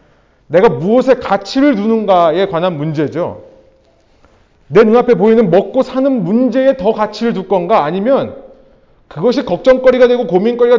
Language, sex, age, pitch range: Korean, male, 30-49, 175-255 Hz